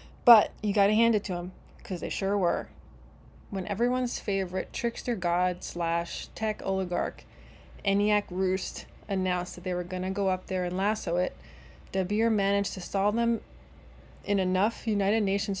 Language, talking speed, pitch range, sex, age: English, 150 wpm, 175-205 Hz, female, 20-39